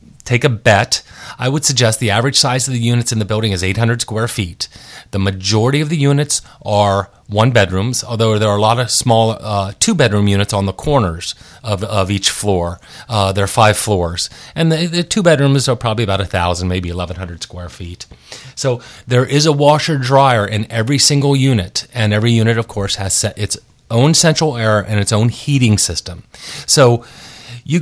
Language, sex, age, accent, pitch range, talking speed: English, male, 30-49, American, 100-130 Hz, 200 wpm